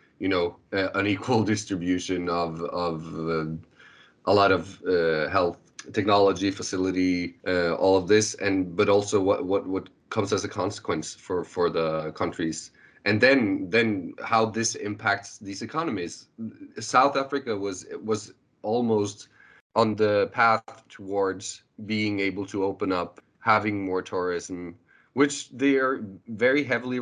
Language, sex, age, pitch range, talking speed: English, male, 30-49, 95-110 Hz, 140 wpm